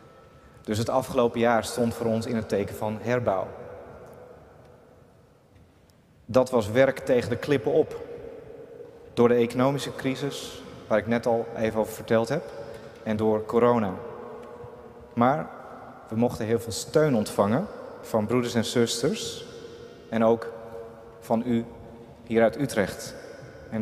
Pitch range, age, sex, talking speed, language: 115-130 Hz, 30-49, male, 135 wpm, Dutch